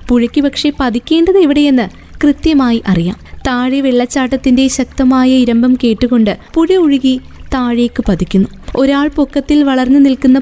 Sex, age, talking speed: female, 20-39, 110 wpm